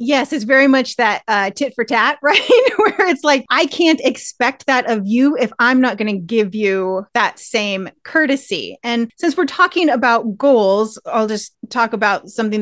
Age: 30-49